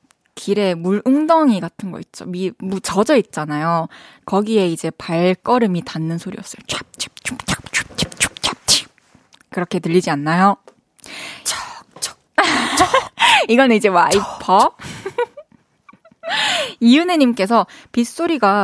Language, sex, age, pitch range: Korean, female, 20-39, 190-260 Hz